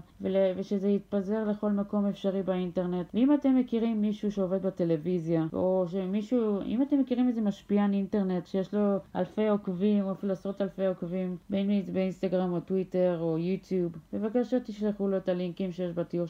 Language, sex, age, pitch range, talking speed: Hebrew, female, 30-49, 195-225 Hz, 160 wpm